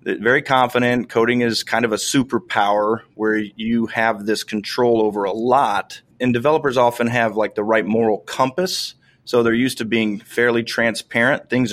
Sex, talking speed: male, 170 wpm